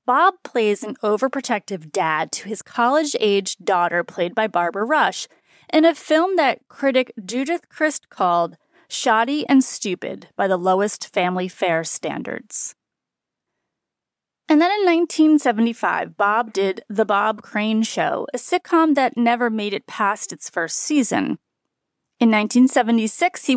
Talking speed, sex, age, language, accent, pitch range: 135 wpm, female, 30-49, English, American, 195-285 Hz